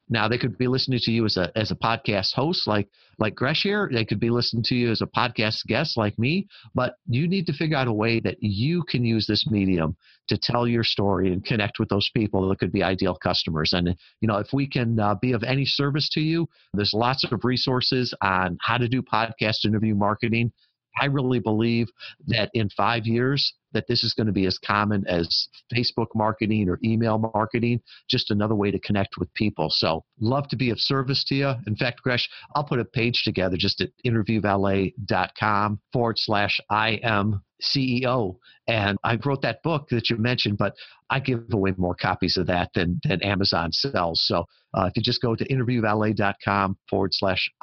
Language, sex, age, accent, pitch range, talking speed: English, male, 40-59, American, 100-125 Hz, 205 wpm